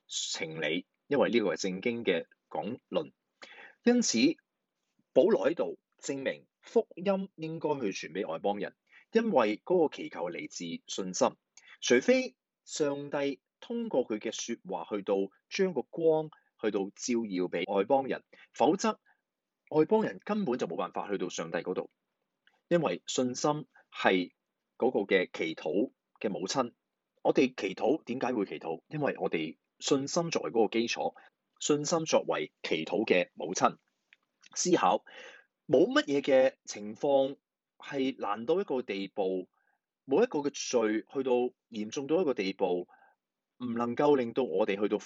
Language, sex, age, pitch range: Chinese, male, 30-49, 110-175 Hz